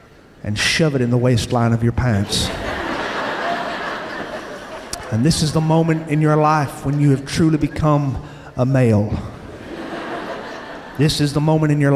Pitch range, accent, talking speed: 115-150 Hz, American, 150 wpm